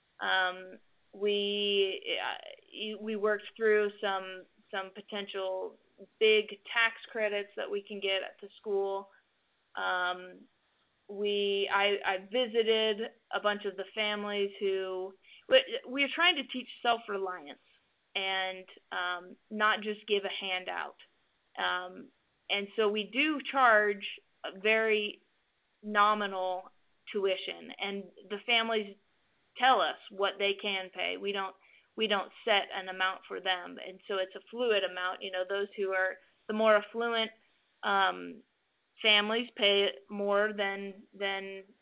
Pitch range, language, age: 195-220 Hz, English, 20-39